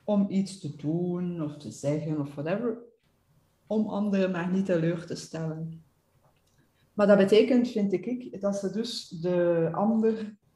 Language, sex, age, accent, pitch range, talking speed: English, female, 30-49, Dutch, 175-210 Hz, 150 wpm